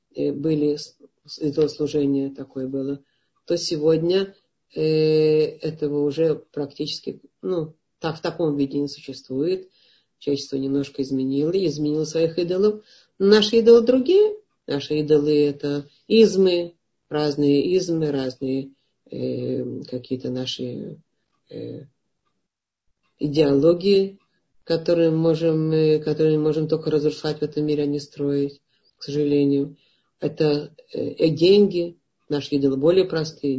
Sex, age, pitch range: female, 40-59, 145-175 Hz